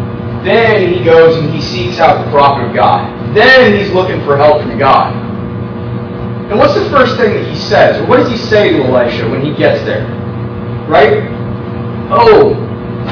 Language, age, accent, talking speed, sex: English, 30-49, American, 175 wpm, male